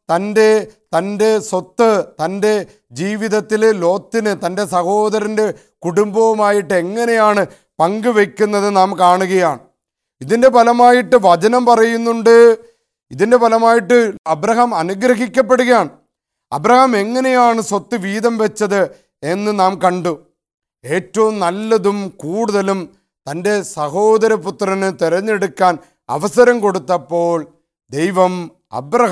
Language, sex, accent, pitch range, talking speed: English, male, Indian, 195-225 Hz, 55 wpm